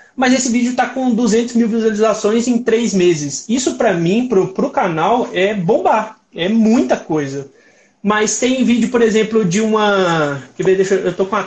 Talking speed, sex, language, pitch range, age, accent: 185 wpm, male, Portuguese, 190-235 Hz, 20-39, Brazilian